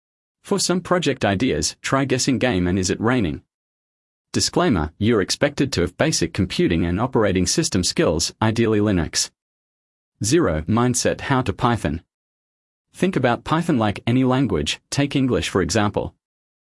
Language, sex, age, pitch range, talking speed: English, male, 30-49, 85-125 Hz, 140 wpm